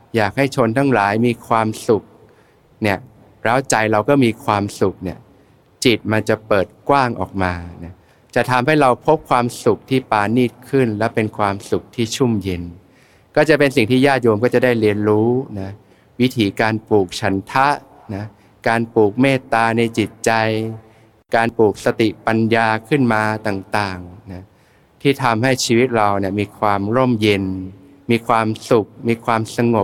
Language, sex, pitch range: Thai, male, 100-120 Hz